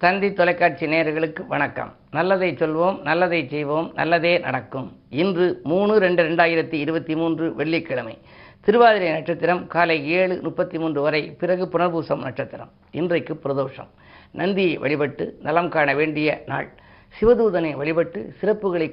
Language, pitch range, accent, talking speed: Tamil, 150-180 Hz, native, 120 wpm